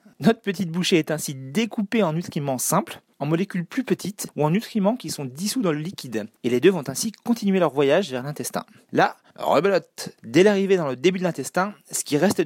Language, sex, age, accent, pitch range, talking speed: French, male, 30-49, French, 150-205 Hz, 210 wpm